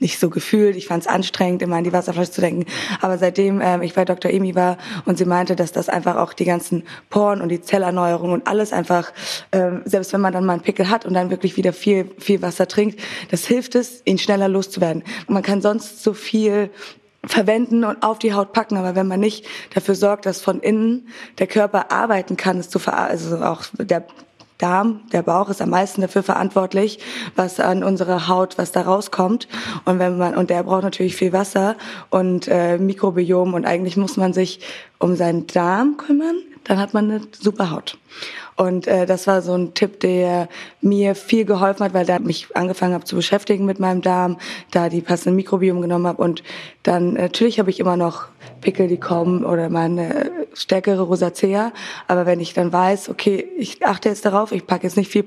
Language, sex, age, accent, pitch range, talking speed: German, female, 20-39, German, 180-205 Hz, 205 wpm